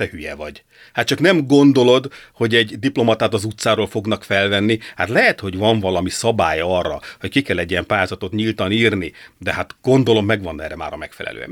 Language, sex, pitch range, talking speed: Hungarian, male, 95-120 Hz, 195 wpm